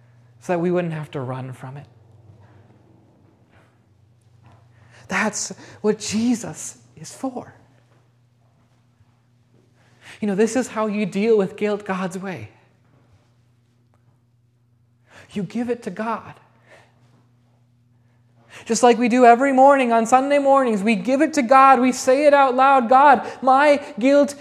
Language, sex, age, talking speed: English, male, 30-49, 130 wpm